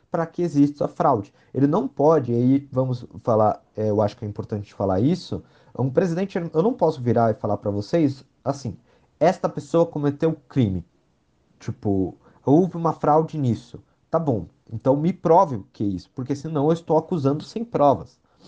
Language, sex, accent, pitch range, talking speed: Portuguese, male, Brazilian, 110-150 Hz, 180 wpm